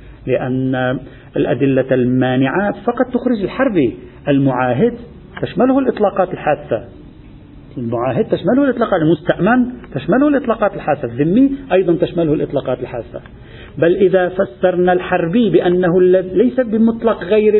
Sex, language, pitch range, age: male, Arabic, 155-220 Hz, 50-69